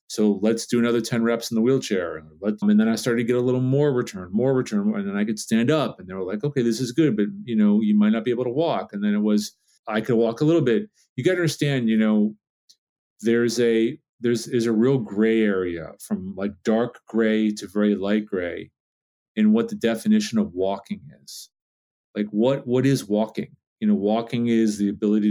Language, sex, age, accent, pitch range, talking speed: English, male, 40-59, American, 105-125 Hz, 225 wpm